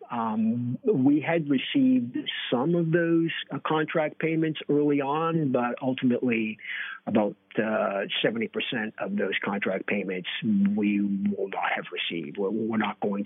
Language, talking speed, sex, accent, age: English, 130 wpm, male, American, 50-69